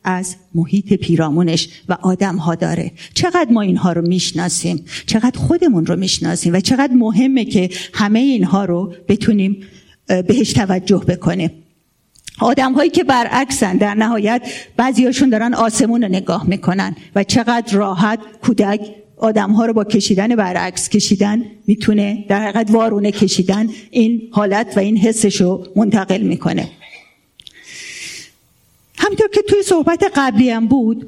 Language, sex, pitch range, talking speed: Persian, female, 185-245 Hz, 130 wpm